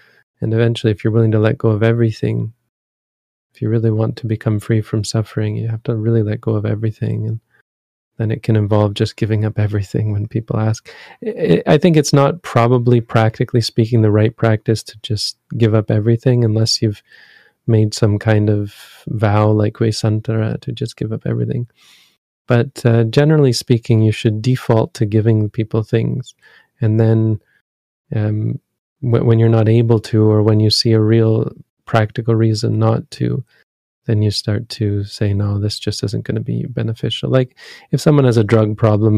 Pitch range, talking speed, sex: 105-115 Hz, 180 wpm, male